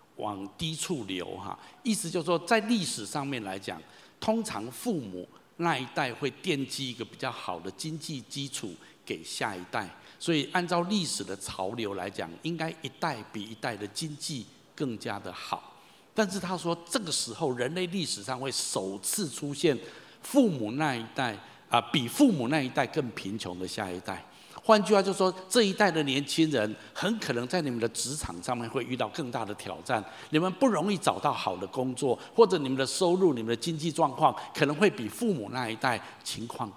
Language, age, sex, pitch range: Chinese, 60-79, male, 110-165 Hz